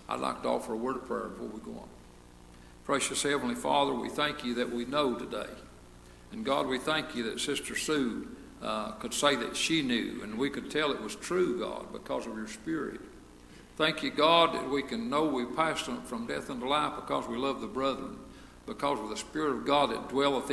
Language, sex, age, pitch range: English, male, 60-79, 115-150 Hz